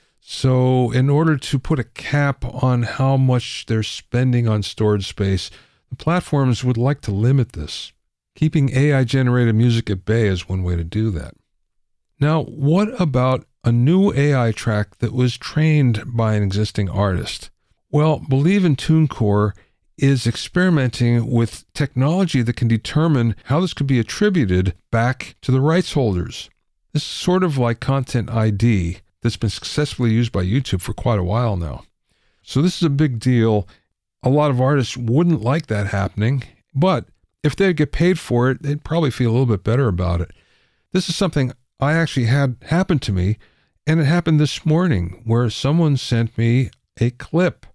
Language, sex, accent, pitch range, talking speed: English, male, American, 110-145 Hz, 170 wpm